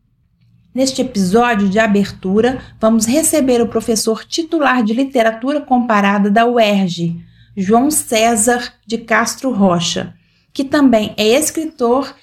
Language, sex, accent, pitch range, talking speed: Portuguese, female, Brazilian, 195-255 Hz, 115 wpm